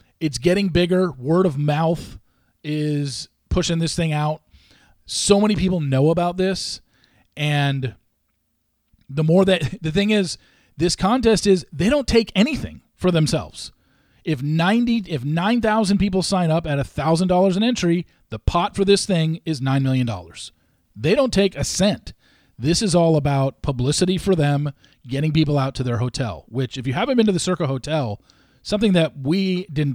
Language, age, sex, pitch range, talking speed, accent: English, 40-59, male, 130-185 Hz, 175 wpm, American